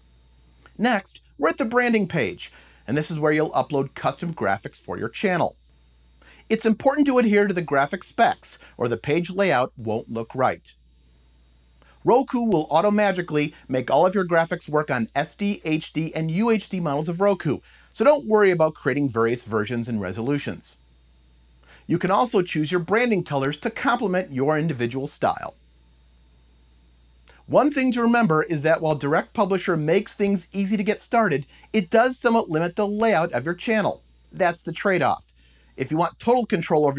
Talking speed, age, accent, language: 165 wpm, 40-59, American, English